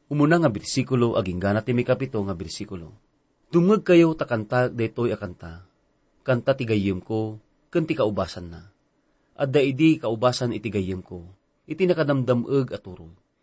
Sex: male